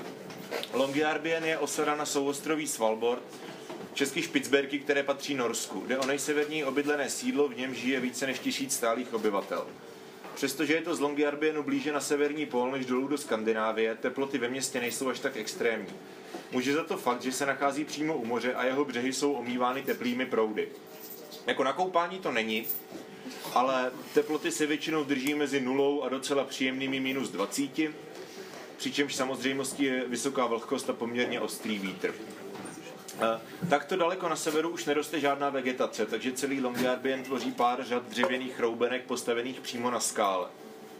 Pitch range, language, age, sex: 120-145 Hz, Czech, 30-49, male